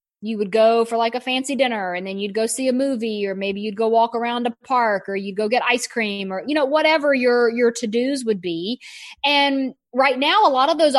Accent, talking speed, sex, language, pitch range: American, 250 wpm, female, English, 215-270 Hz